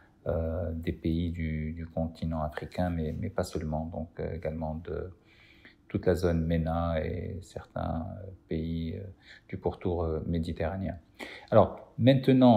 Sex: male